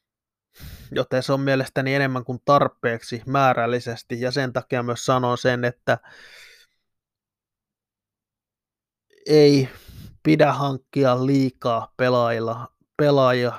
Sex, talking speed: male, 95 wpm